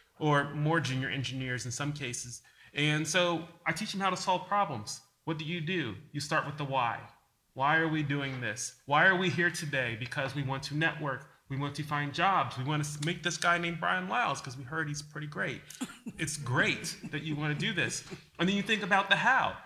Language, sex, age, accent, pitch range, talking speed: English, male, 30-49, American, 135-165 Hz, 230 wpm